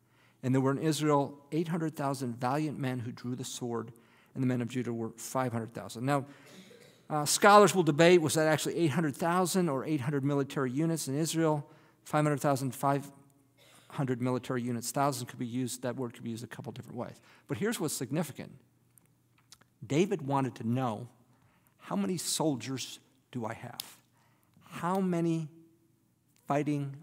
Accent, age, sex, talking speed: American, 50-69, male, 150 wpm